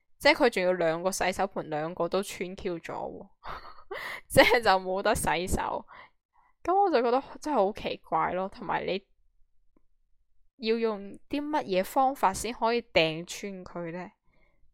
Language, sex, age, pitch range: Chinese, female, 10-29, 170-235 Hz